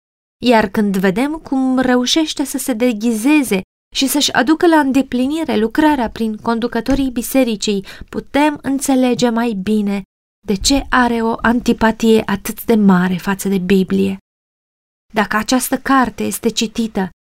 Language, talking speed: Romanian, 130 wpm